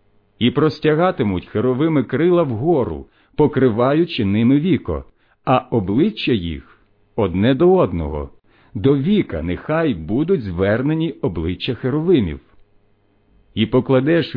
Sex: male